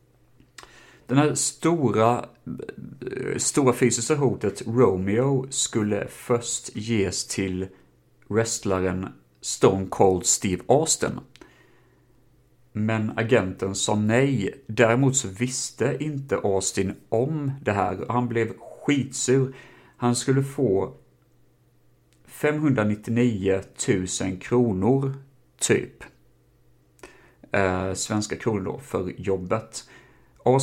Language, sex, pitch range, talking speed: Swedish, male, 95-125 Hz, 90 wpm